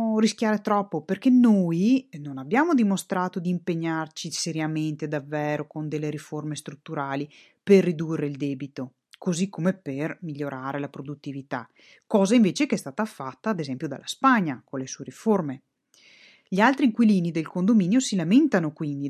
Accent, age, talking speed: native, 30-49, 150 wpm